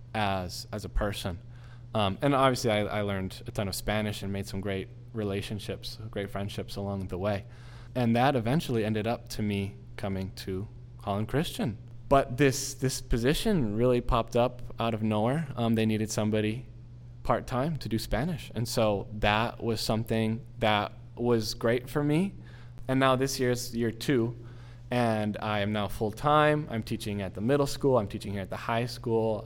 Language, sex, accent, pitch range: English, male, American, 105-120 Hz